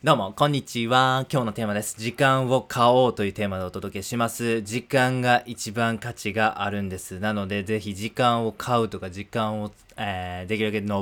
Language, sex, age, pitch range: Japanese, male, 20-39, 100-115 Hz